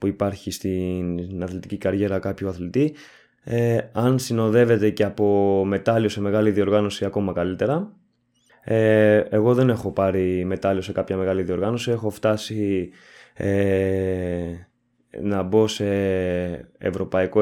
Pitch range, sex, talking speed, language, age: 95-120 Hz, male, 120 wpm, Greek, 20-39